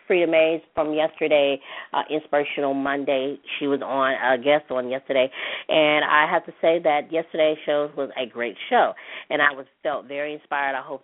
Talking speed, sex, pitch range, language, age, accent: 185 wpm, female, 135-155 Hz, English, 40-59, American